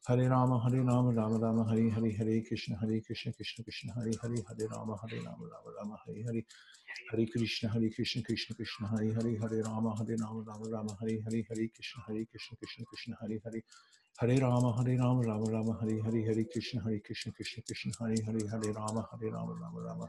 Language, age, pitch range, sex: English, 50-69, 110-115 Hz, male